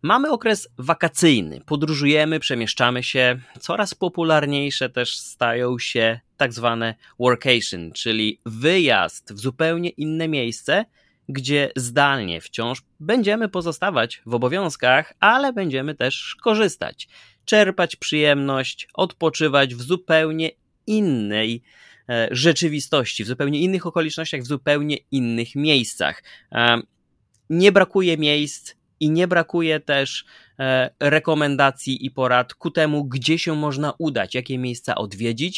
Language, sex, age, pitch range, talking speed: Polish, male, 30-49, 125-160 Hz, 110 wpm